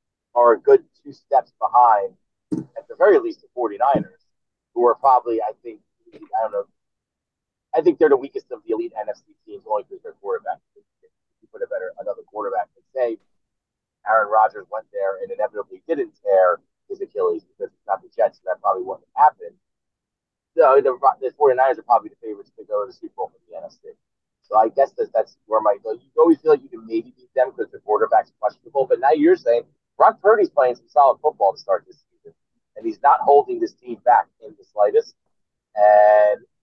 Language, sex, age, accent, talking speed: English, male, 30-49, American, 205 wpm